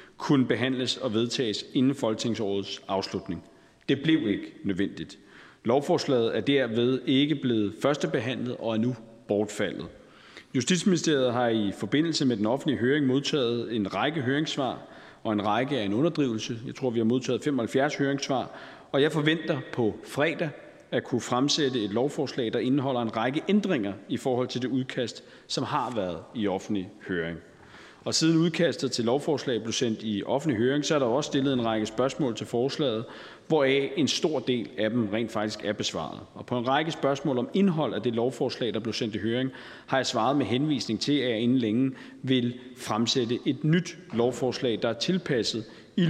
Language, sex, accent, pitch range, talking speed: Danish, male, native, 115-140 Hz, 175 wpm